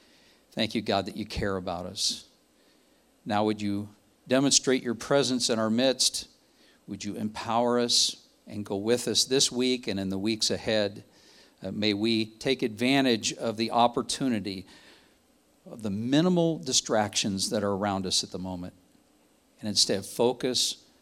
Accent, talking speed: American, 155 wpm